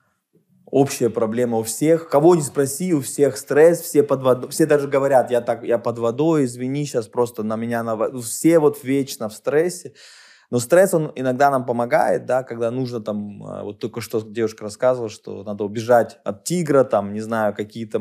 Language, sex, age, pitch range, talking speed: Russian, male, 20-39, 110-140 Hz, 185 wpm